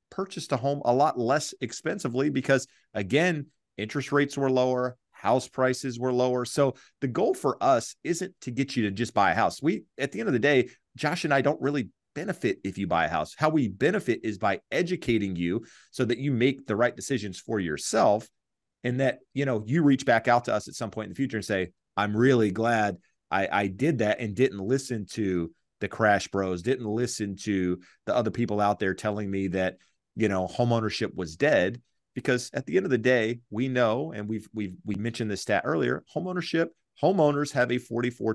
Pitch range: 100-130 Hz